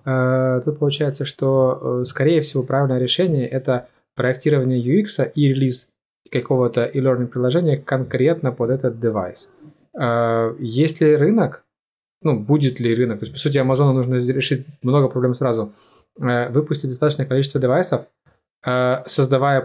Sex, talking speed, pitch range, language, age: male, 140 wpm, 115-130 Hz, Ukrainian, 20-39